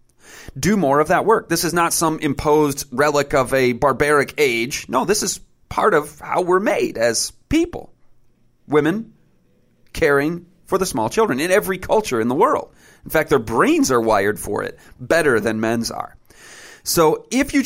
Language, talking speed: English, 175 wpm